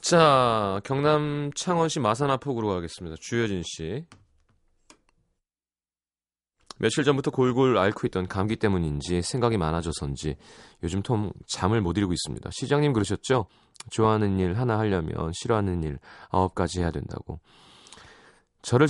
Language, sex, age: Korean, male, 30-49